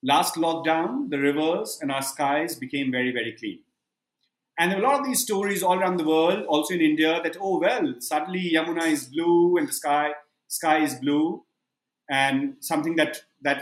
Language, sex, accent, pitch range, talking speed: English, male, Indian, 145-215 Hz, 185 wpm